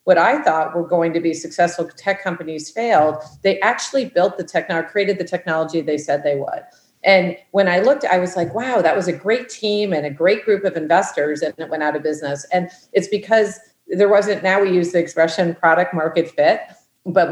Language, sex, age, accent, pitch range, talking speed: English, female, 40-59, American, 160-190 Hz, 215 wpm